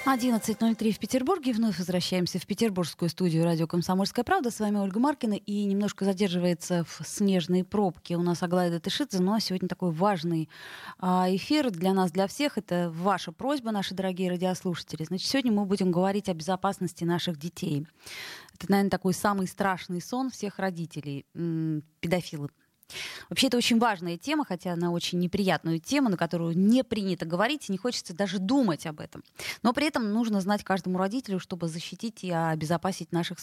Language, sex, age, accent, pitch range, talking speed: Russian, female, 20-39, native, 175-210 Hz, 165 wpm